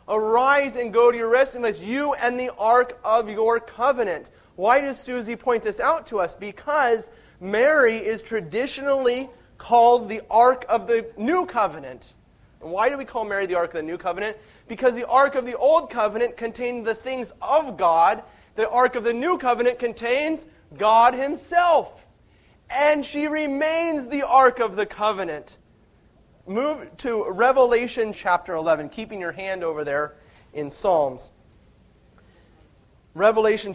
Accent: American